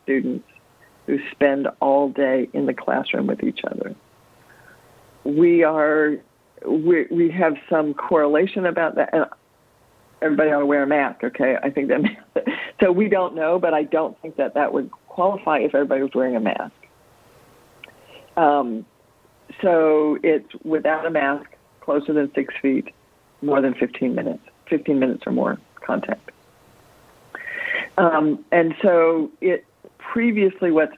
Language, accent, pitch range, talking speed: English, American, 140-175 Hz, 140 wpm